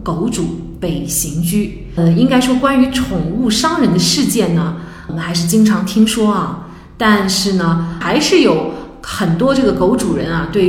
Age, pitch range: 20-39, 175-245 Hz